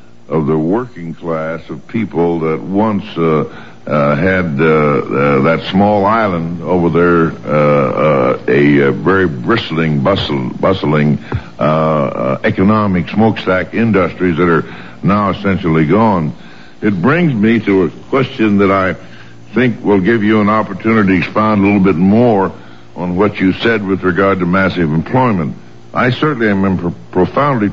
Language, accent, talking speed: English, American, 155 wpm